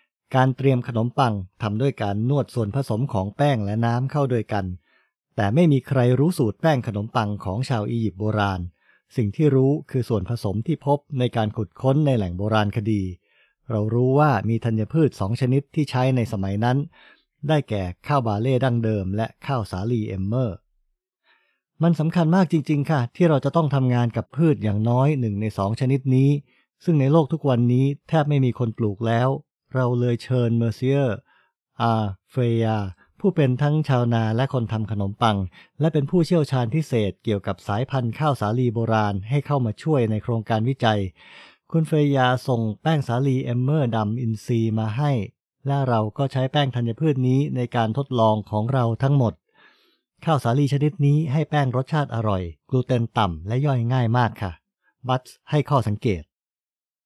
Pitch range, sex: 110-140 Hz, male